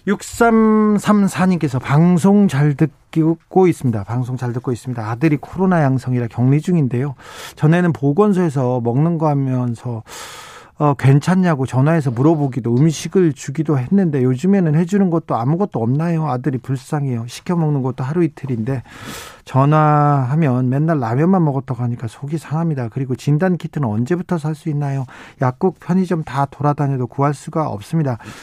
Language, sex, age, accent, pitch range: Korean, male, 40-59, native, 130-175 Hz